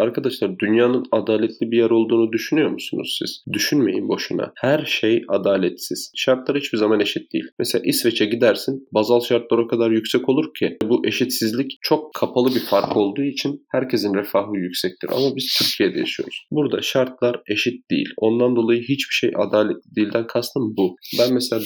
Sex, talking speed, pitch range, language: male, 160 wpm, 105-130 Hz, Turkish